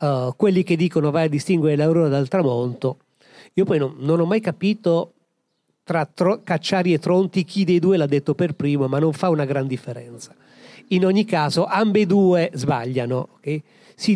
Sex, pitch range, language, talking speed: male, 145-185 Hz, Italian, 180 wpm